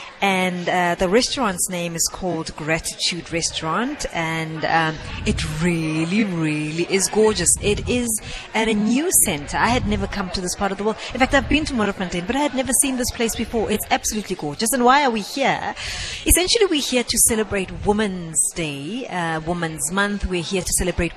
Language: English